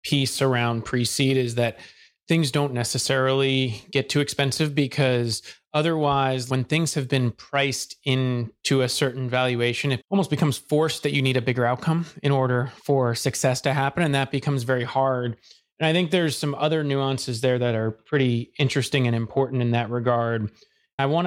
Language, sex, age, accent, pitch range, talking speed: English, male, 30-49, American, 120-140 Hz, 175 wpm